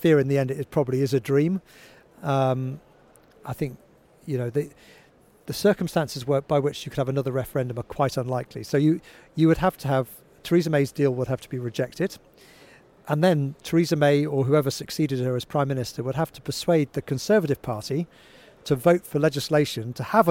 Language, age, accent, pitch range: English, 40-59, British, 130-155 Hz